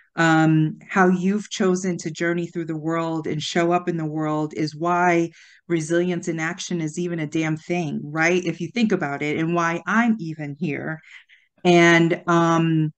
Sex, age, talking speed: female, 40-59, 170 wpm